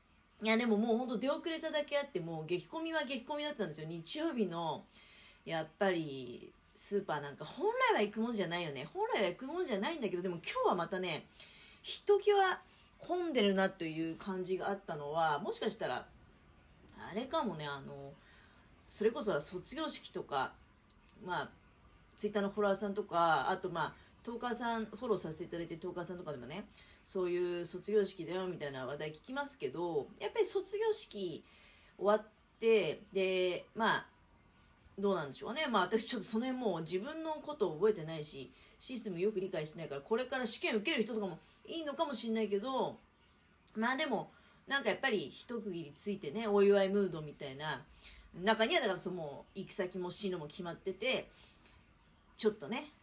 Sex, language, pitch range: female, Japanese, 175-240 Hz